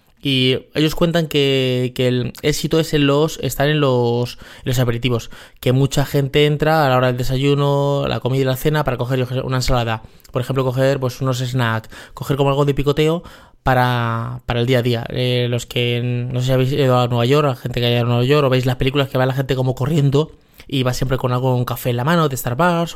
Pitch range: 125-150 Hz